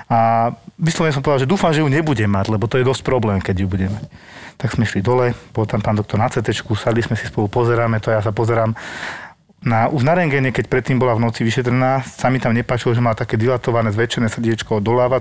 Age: 40-59